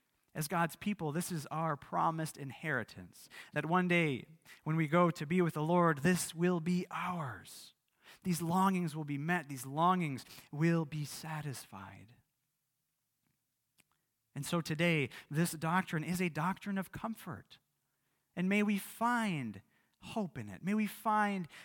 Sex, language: male, English